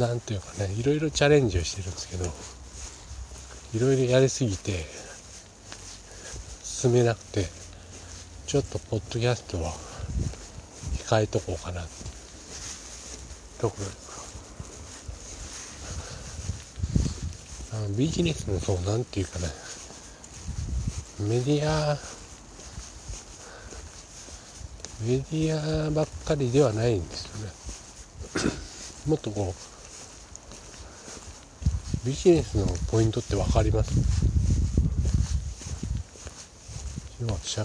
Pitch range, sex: 85-115 Hz, male